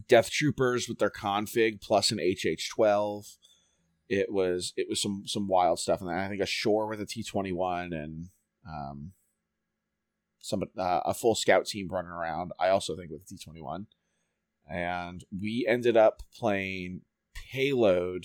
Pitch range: 90-110 Hz